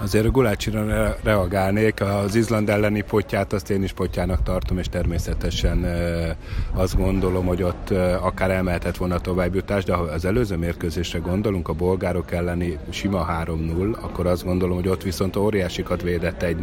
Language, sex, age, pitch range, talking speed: Hungarian, male, 30-49, 85-100 Hz, 160 wpm